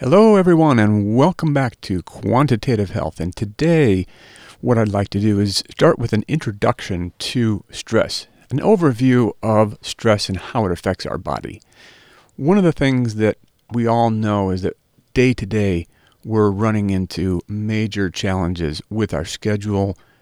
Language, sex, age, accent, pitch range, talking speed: English, male, 50-69, American, 100-125 Hz, 155 wpm